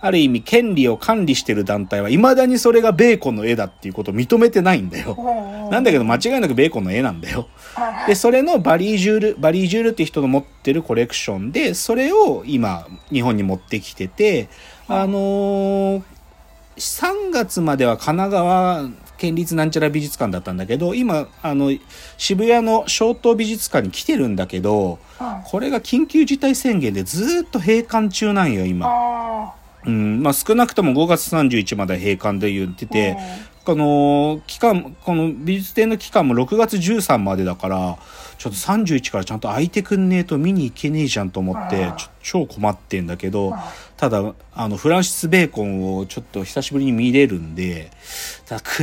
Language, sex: Japanese, male